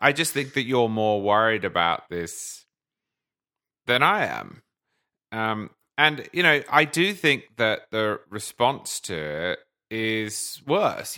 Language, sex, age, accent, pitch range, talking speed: English, male, 30-49, British, 105-155 Hz, 140 wpm